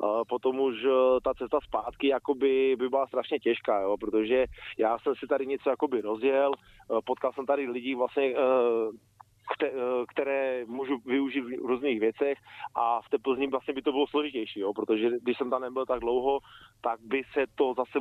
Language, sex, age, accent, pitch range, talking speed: Czech, male, 20-39, native, 120-135 Hz, 180 wpm